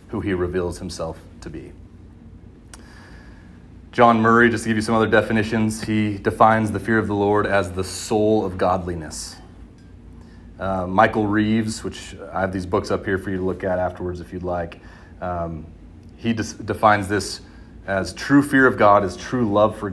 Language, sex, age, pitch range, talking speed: English, male, 30-49, 90-110 Hz, 180 wpm